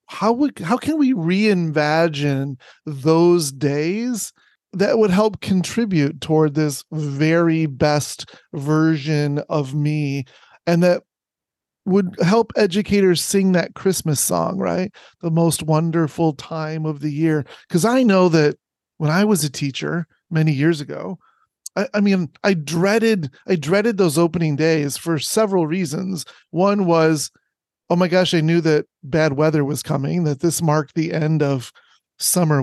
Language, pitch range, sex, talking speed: English, 150-185 Hz, male, 145 wpm